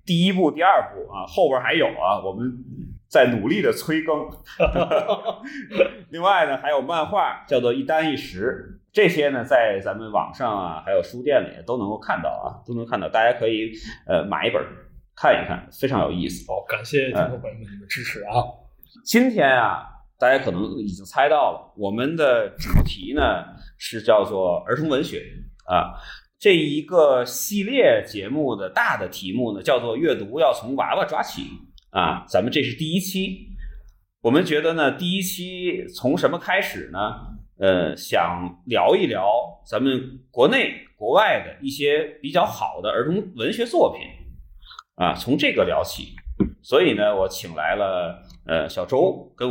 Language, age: Chinese, 30-49